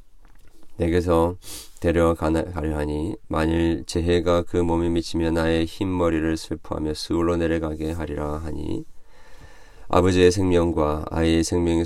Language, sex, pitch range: Korean, male, 80-85 Hz